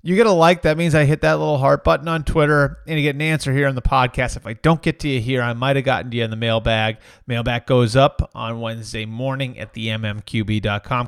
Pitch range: 120-155 Hz